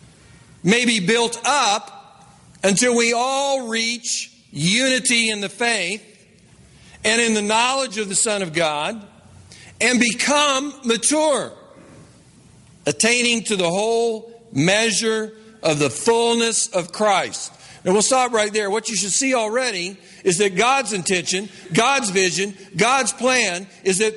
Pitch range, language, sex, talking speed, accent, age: 195-245 Hz, English, male, 135 wpm, American, 50-69